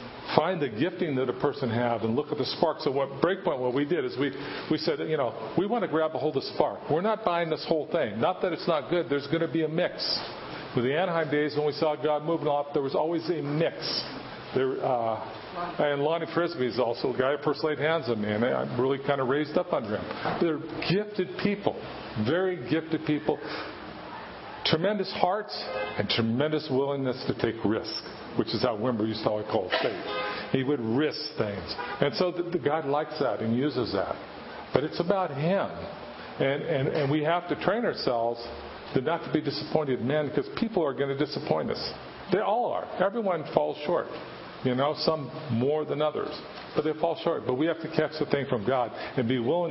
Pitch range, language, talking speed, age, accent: 130-165 Hz, English, 215 wpm, 50-69, American